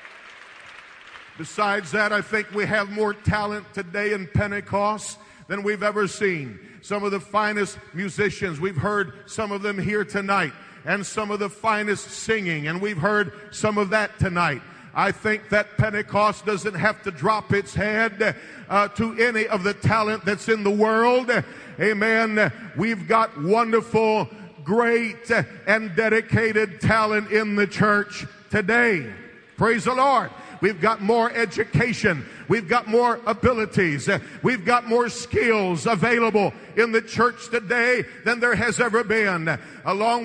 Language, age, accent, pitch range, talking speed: English, 50-69, American, 200-235 Hz, 145 wpm